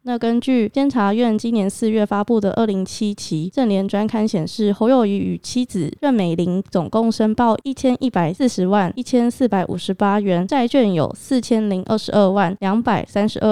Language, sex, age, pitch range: Chinese, female, 20-39, 190-235 Hz